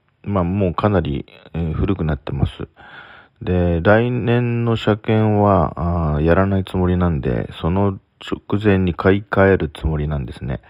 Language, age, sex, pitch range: Japanese, 40-59, male, 75-105 Hz